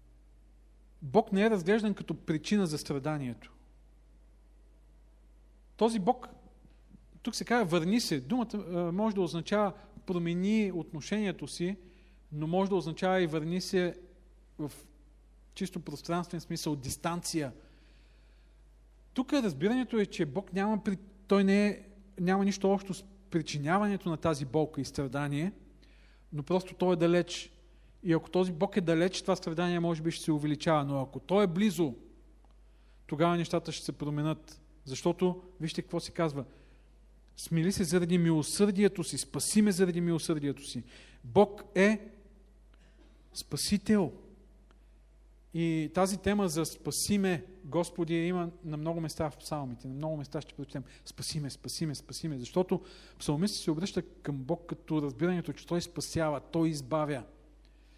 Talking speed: 135 wpm